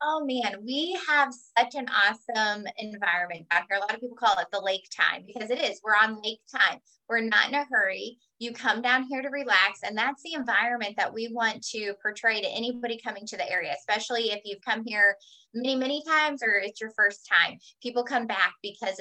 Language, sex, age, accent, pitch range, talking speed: English, female, 20-39, American, 200-245 Hz, 220 wpm